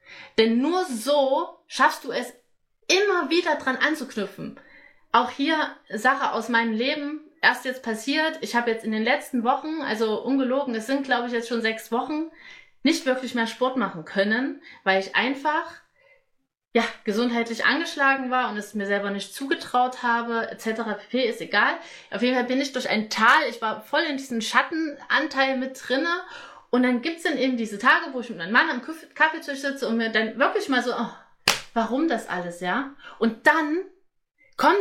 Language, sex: German, female